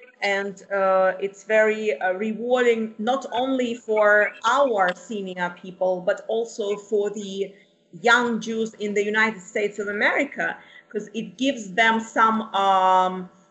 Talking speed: 135 wpm